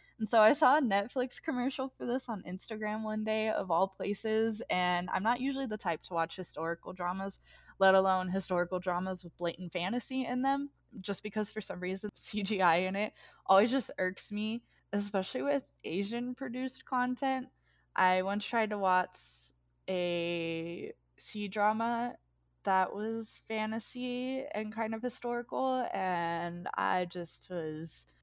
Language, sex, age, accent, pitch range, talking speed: English, female, 20-39, American, 180-225 Hz, 150 wpm